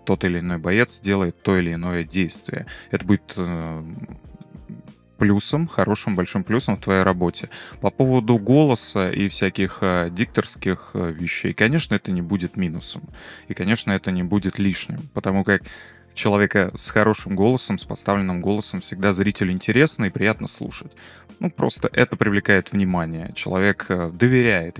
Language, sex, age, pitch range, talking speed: Russian, male, 20-39, 90-110 Hz, 150 wpm